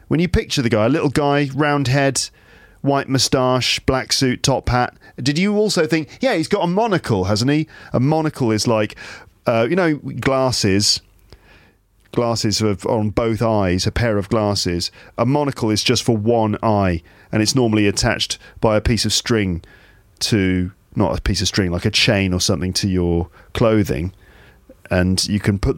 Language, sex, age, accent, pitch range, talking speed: English, male, 40-59, British, 105-145 Hz, 180 wpm